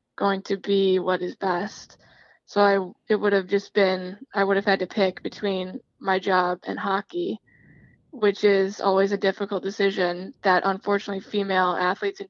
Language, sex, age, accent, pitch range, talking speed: English, female, 10-29, American, 190-205 Hz, 170 wpm